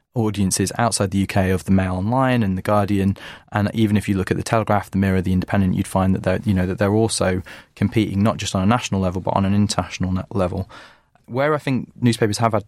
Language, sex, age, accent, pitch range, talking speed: English, male, 20-39, British, 95-110 Hz, 230 wpm